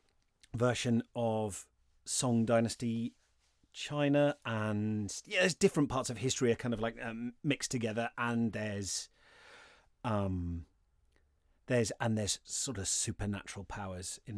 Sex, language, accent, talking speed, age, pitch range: male, English, British, 125 wpm, 30-49, 100-135 Hz